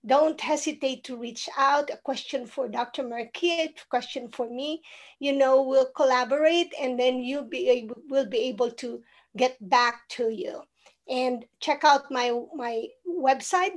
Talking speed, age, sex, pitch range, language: 155 wpm, 40-59, female, 250-310 Hz, English